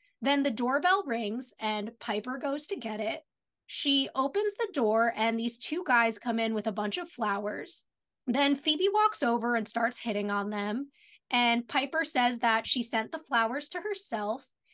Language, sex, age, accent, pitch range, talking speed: English, female, 20-39, American, 225-290 Hz, 180 wpm